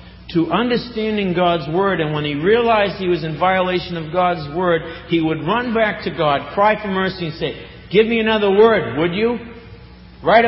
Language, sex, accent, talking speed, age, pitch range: English, male, American, 190 wpm, 50-69, 125-180 Hz